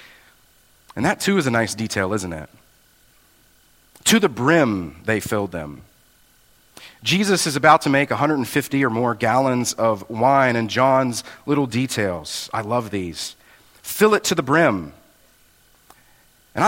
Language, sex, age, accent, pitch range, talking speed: English, male, 40-59, American, 115-155 Hz, 140 wpm